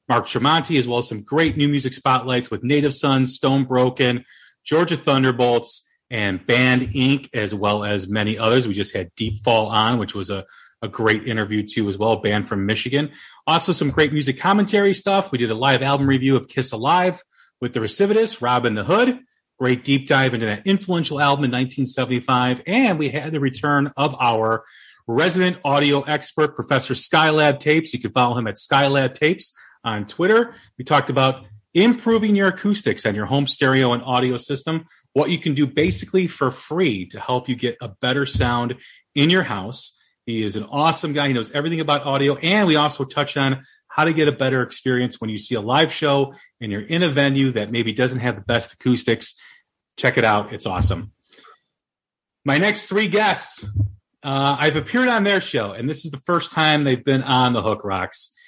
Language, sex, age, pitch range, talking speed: English, male, 30-49, 120-150 Hz, 195 wpm